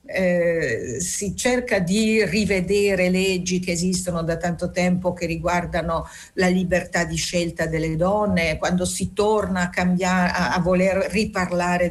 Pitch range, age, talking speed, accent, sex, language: 175-220 Hz, 50-69, 130 wpm, native, female, Italian